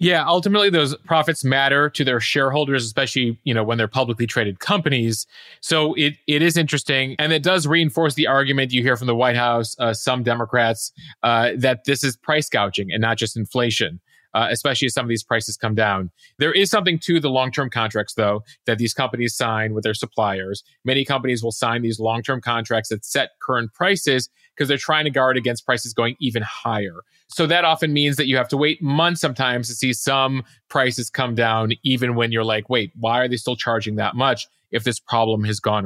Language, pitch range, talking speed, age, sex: English, 115-145 Hz, 210 wpm, 30-49, male